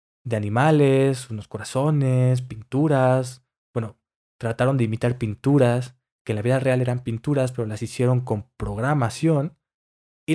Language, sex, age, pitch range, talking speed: Spanish, male, 20-39, 115-140 Hz, 135 wpm